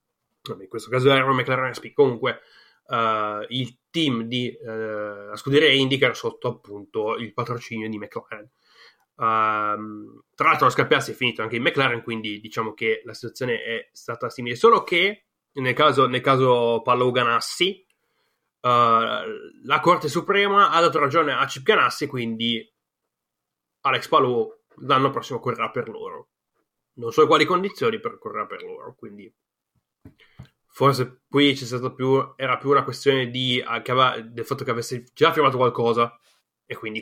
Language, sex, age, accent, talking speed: Italian, male, 20-39, native, 145 wpm